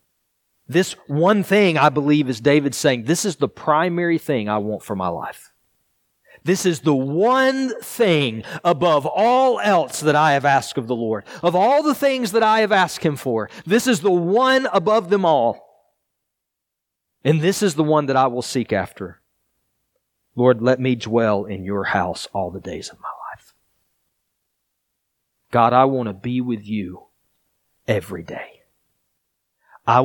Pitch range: 115-175 Hz